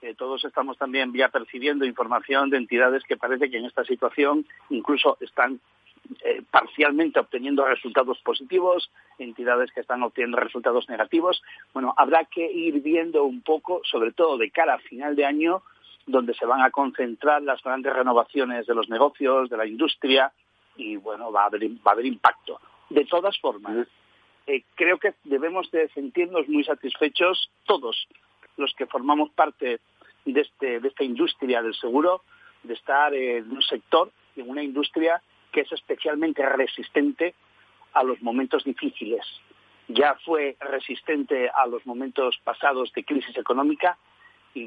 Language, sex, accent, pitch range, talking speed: Spanish, male, Spanish, 130-165 Hz, 155 wpm